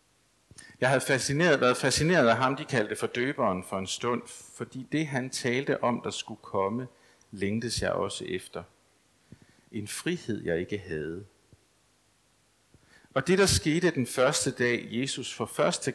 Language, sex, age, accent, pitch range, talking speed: Danish, male, 60-79, native, 100-130 Hz, 155 wpm